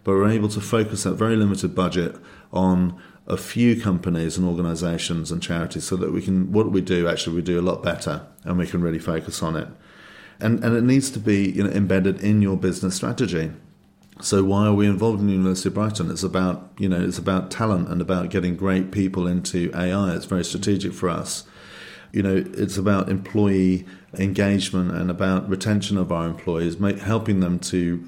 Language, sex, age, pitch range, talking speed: English, male, 40-59, 85-100 Hz, 200 wpm